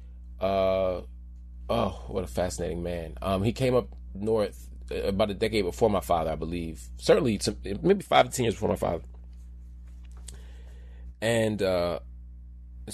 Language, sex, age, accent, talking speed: English, male, 30-49, American, 145 wpm